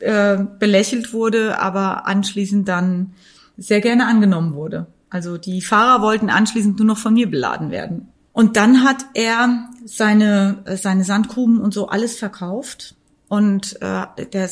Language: German